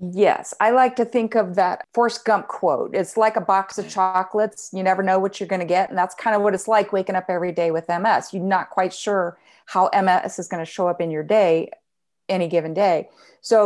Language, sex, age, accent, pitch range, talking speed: English, female, 40-59, American, 180-210 Hz, 240 wpm